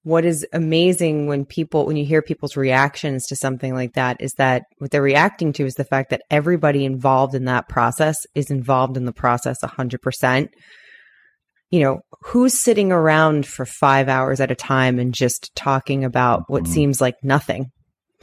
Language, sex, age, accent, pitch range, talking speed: English, female, 20-39, American, 130-155 Hz, 185 wpm